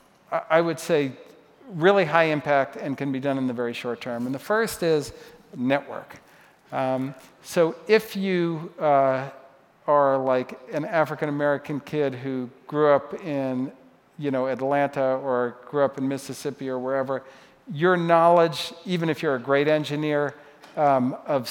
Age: 50-69